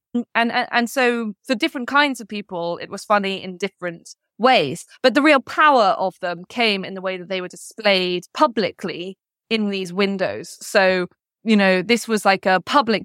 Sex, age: female, 20-39